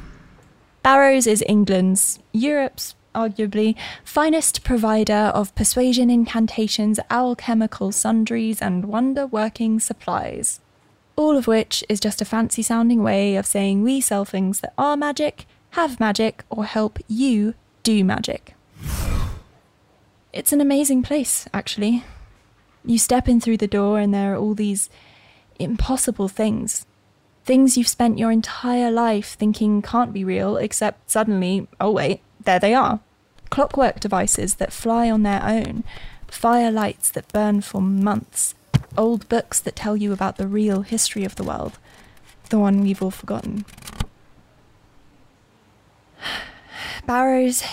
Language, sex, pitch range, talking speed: English, female, 205-245 Hz, 130 wpm